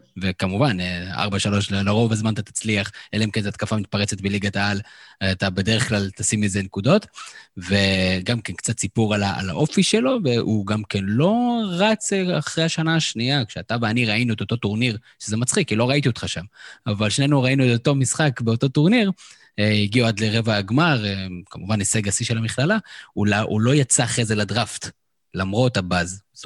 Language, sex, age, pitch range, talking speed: Hebrew, male, 20-39, 100-125 Hz, 170 wpm